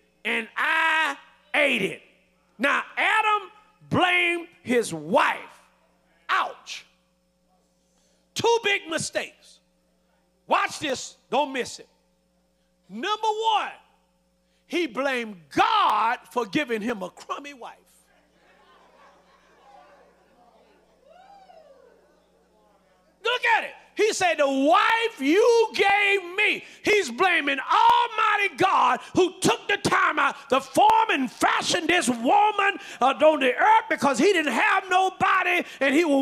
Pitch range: 270-410 Hz